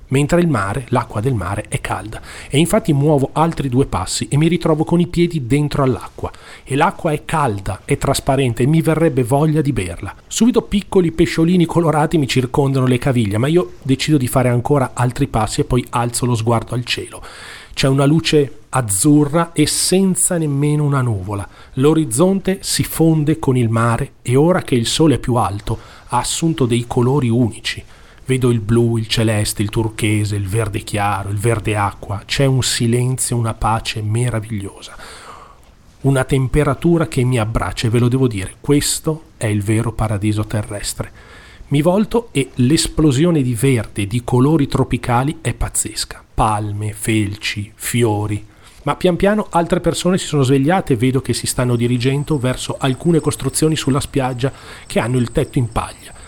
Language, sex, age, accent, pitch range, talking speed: Italian, male, 40-59, native, 110-150 Hz, 170 wpm